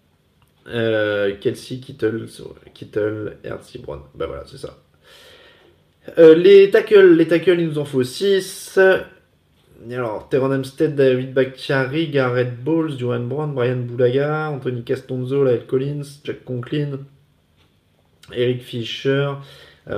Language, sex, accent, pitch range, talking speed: French, male, French, 110-140 Hz, 120 wpm